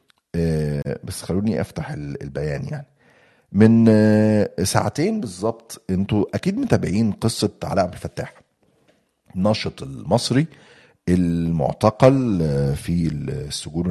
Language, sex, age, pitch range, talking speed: Arabic, male, 50-69, 85-115 Hz, 85 wpm